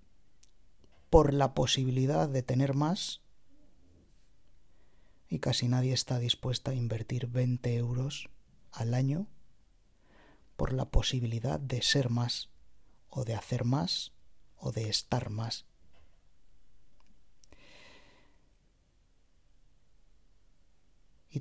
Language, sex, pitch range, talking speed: Spanish, male, 100-130 Hz, 90 wpm